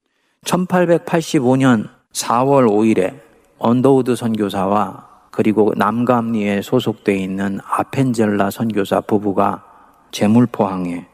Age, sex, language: 40-59, male, Korean